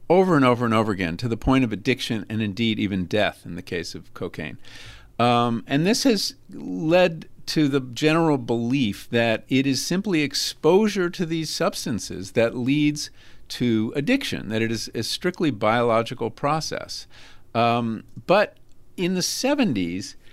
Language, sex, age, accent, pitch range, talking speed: English, male, 50-69, American, 115-165 Hz, 155 wpm